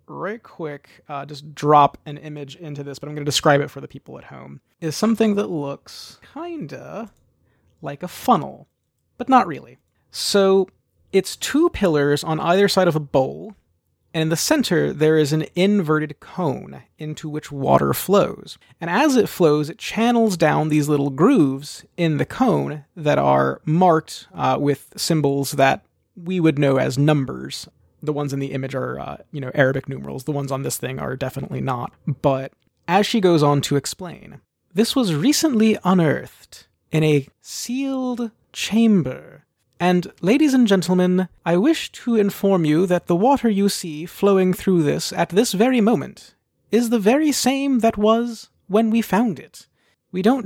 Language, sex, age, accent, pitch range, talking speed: English, male, 30-49, American, 145-220 Hz, 175 wpm